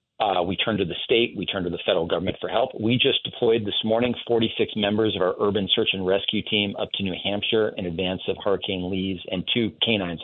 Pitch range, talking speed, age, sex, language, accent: 95-115 Hz, 235 wpm, 40-59, male, English, American